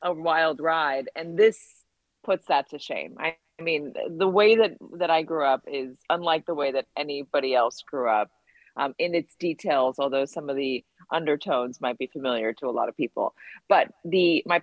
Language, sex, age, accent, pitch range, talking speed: English, female, 30-49, American, 155-205 Hz, 195 wpm